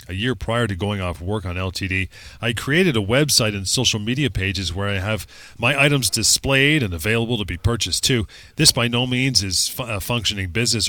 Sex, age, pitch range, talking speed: male, 30-49, 100-130 Hz, 205 wpm